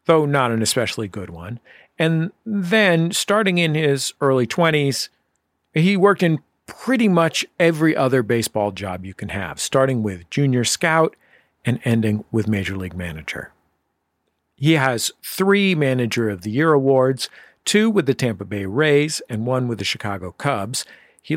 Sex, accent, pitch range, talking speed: male, American, 110-160 Hz, 155 wpm